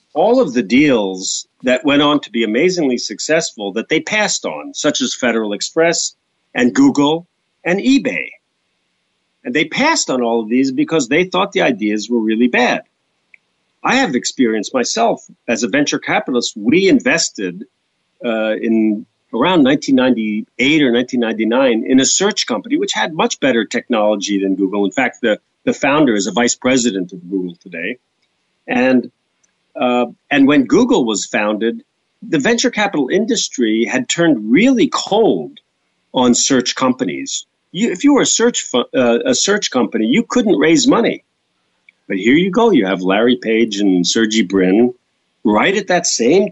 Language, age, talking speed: English, 50-69, 160 wpm